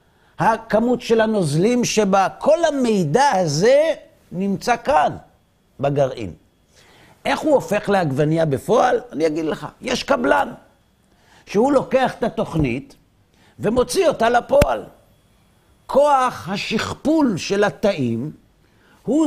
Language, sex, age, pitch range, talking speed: Hebrew, male, 50-69, 150-230 Hz, 100 wpm